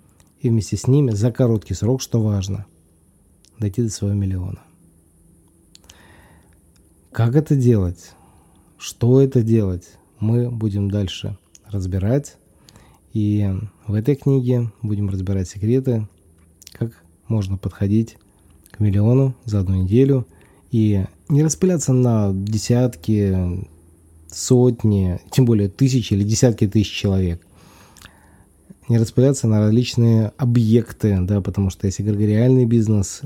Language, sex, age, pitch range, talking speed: Russian, male, 20-39, 95-115 Hz, 110 wpm